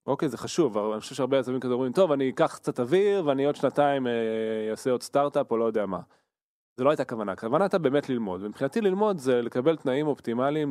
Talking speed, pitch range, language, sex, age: 225 wpm, 110-150 Hz, Hebrew, male, 20-39